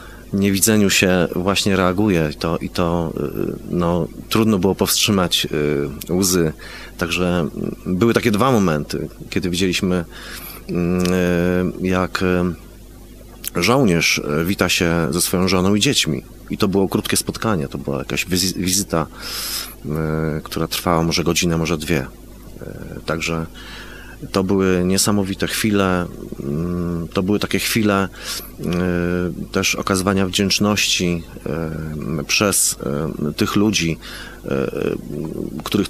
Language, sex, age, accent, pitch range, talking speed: Polish, male, 30-49, native, 85-100 Hz, 95 wpm